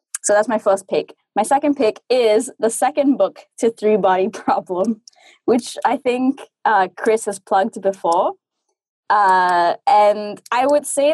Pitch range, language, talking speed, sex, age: 190-250 Hz, English, 150 wpm, female, 20-39